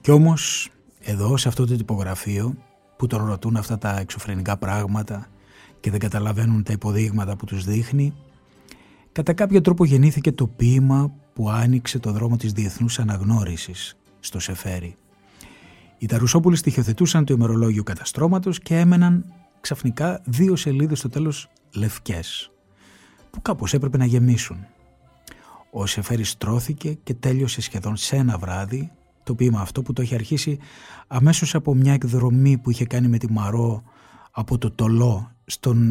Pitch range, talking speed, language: 105-135 Hz, 145 wpm, Greek